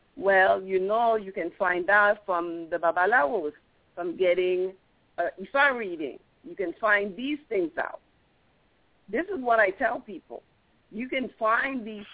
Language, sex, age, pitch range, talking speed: English, female, 50-69, 210-285 Hz, 155 wpm